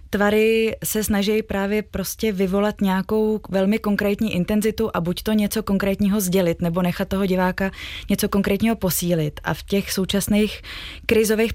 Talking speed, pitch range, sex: 145 wpm, 180-200 Hz, female